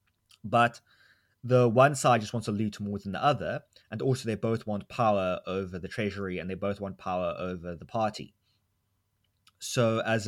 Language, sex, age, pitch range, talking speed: English, male, 20-39, 100-125 Hz, 185 wpm